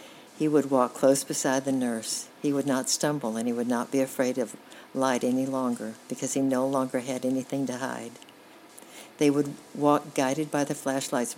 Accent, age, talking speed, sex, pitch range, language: American, 60-79, 190 wpm, female, 130-155 Hz, English